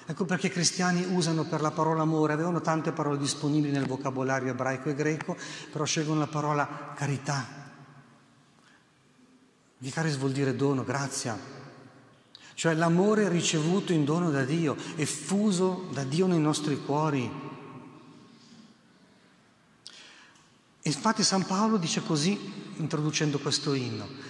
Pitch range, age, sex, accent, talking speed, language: 140-185 Hz, 40-59, male, native, 125 wpm, Italian